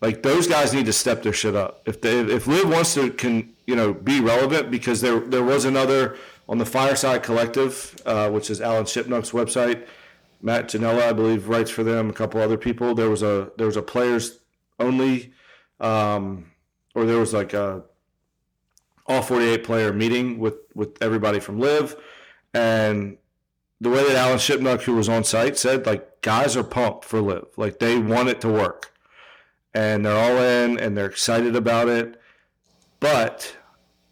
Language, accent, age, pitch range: English, American, 40-59, 110-125 Hz